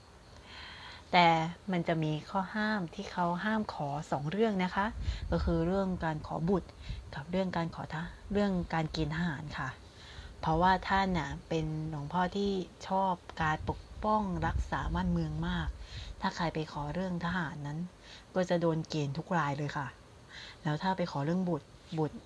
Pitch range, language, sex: 155-185 Hz, Thai, female